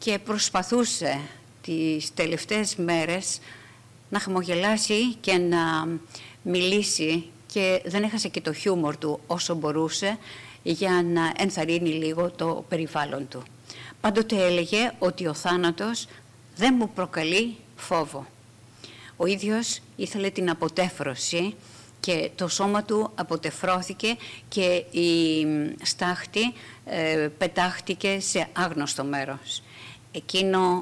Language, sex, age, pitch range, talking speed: Greek, female, 50-69, 140-185 Hz, 105 wpm